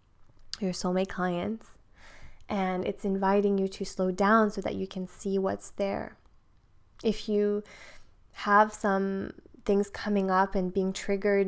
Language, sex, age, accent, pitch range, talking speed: English, female, 20-39, American, 185-205 Hz, 140 wpm